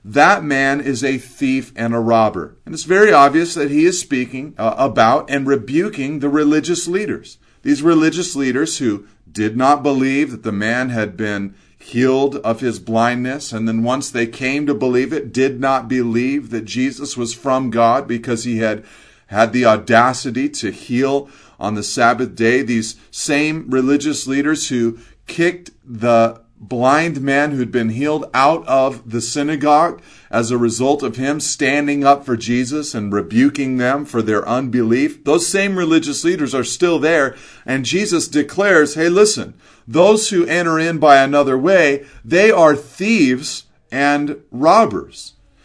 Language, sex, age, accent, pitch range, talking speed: English, male, 40-59, American, 120-150 Hz, 160 wpm